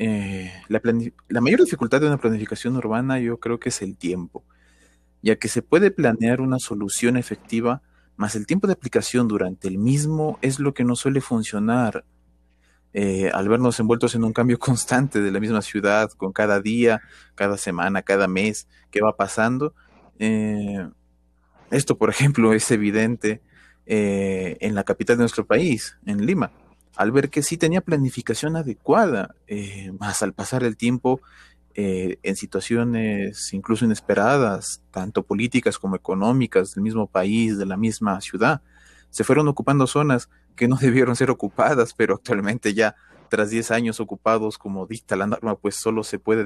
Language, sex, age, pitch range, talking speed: Spanish, male, 30-49, 100-120 Hz, 165 wpm